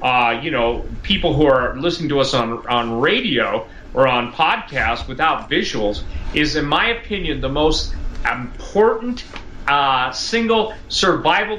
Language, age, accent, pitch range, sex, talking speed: English, 40-59, American, 125-180 Hz, male, 140 wpm